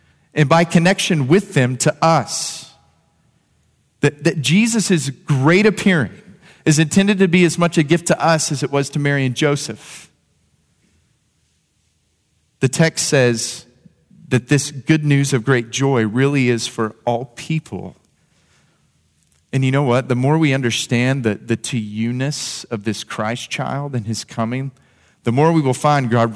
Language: English